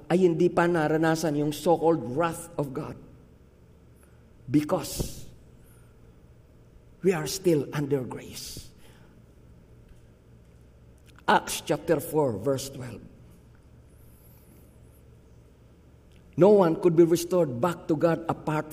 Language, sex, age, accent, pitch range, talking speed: Filipino, male, 50-69, native, 150-225 Hz, 90 wpm